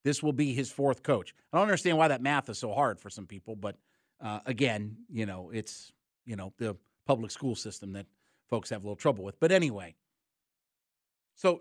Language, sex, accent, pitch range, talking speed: English, male, American, 120-155 Hz, 205 wpm